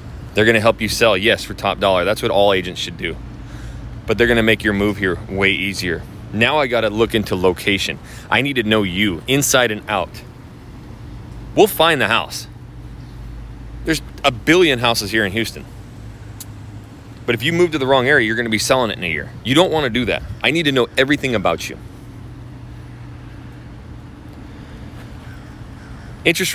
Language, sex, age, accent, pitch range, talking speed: English, male, 30-49, American, 105-135 Hz, 190 wpm